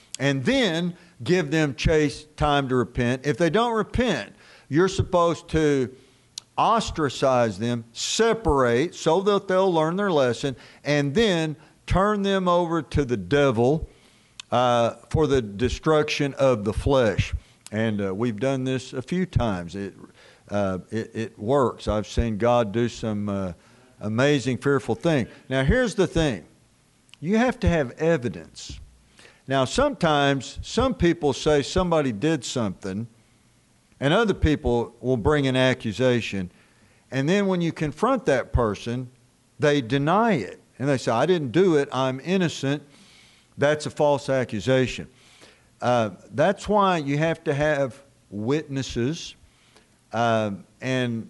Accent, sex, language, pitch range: American, male, English, 120-160 Hz